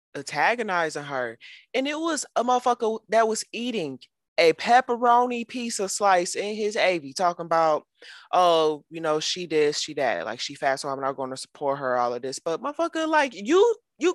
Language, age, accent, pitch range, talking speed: English, 20-39, American, 140-210 Hz, 190 wpm